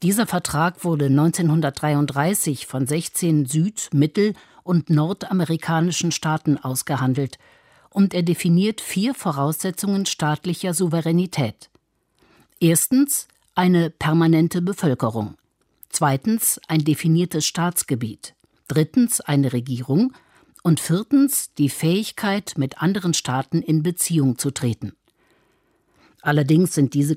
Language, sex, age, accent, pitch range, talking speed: German, female, 50-69, German, 145-185 Hz, 95 wpm